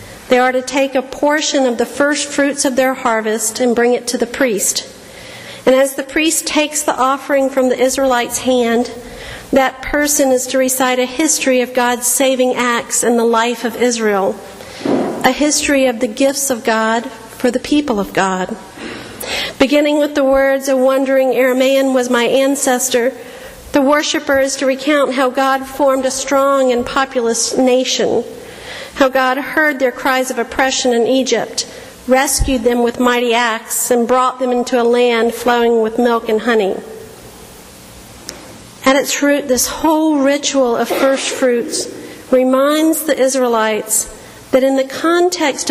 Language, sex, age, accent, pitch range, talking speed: English, female, 50-69, American, 240-270 Hz, 160 wpm